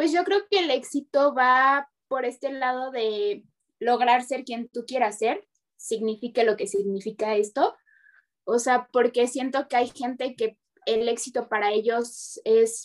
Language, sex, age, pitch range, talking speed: Spanish, female, 20-39, 220-260 Hz, 165 wpm